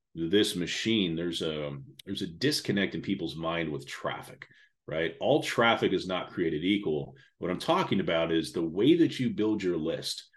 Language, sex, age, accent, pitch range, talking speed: English, male, 30-49, American, 80-100 Hz, 180 wpm